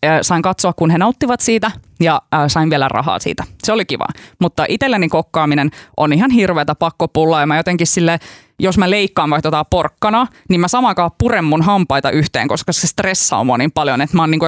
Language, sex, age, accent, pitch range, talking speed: Finnish, female, 20-39, native, 160-220 Hz, 190 wpm